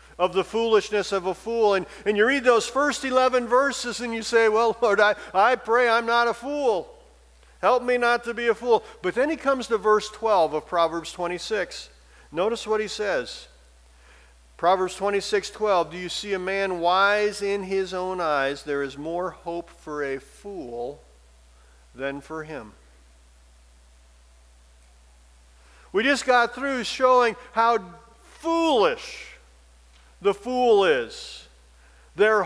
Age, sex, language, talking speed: 50-69, male, English, 150 wpm